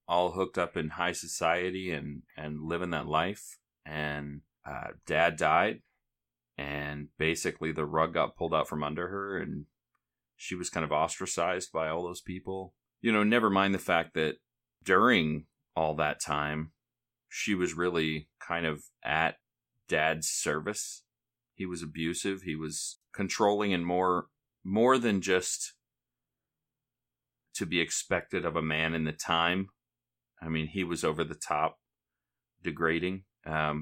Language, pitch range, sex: English, 75-90 Hz, male